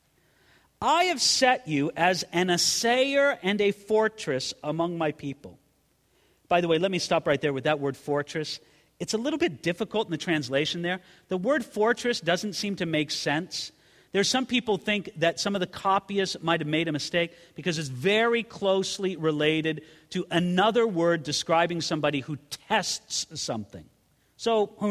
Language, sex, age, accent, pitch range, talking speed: English, male, 50-69, American, 155-220 Hz, 170 wpm